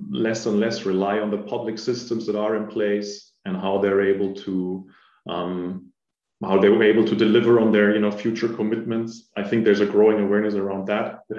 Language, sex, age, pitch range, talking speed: English, male, 30-49, 100-115 Hz, 205 wpm